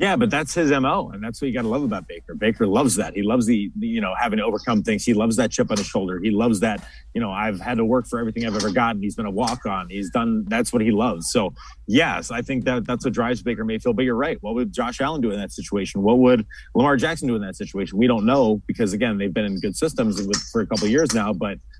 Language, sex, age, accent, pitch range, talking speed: English, male, 30-49, American, 105-130 Hz, 285 wpm